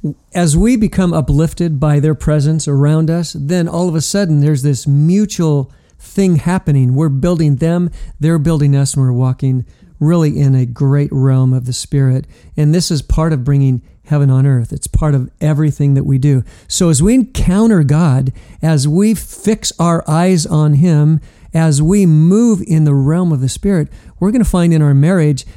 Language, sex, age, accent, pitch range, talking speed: English, male, 50-69, American, 145-185 Hz, 190 wpm